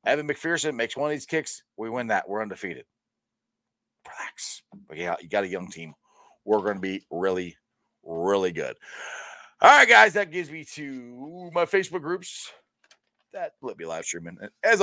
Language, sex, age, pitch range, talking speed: English, male, 40-59, 115-195 Hz, 175 wpm